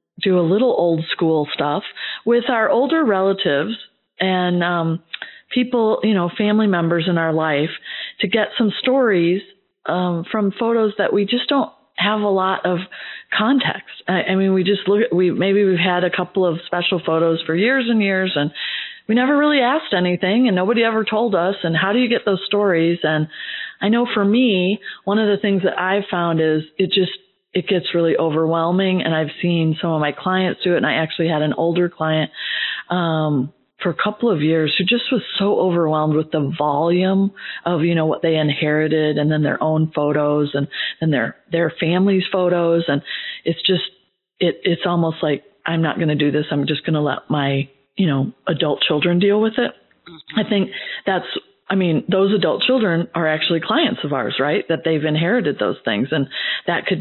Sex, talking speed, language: female, 200 wpm, English